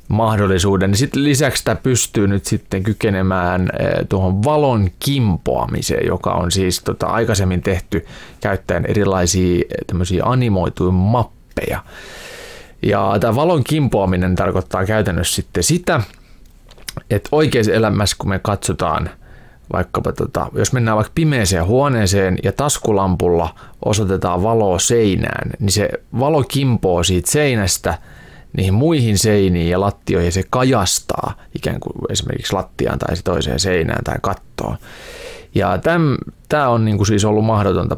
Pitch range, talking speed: 90-120 Hz, 120 wpm